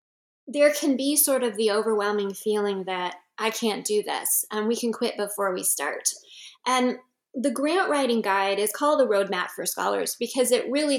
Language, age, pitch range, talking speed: English, 20-39, 220-280 Hz, 185 wpm